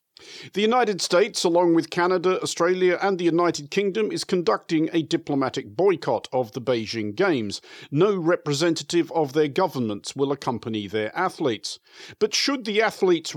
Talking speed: 150 wpm